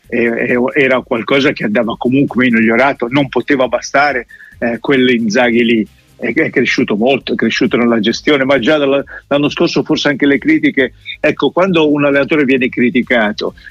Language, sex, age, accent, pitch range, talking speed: Italian, male, 50-69, native, 120-140 Hz, 150 wpm